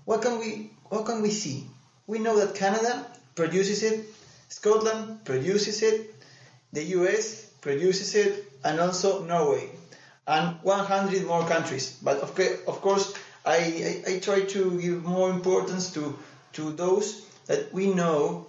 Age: 30-49